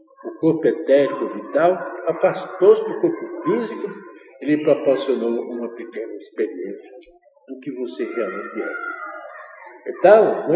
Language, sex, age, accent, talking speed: Portuguese, male, 60-79, Brazilian, 120 wpm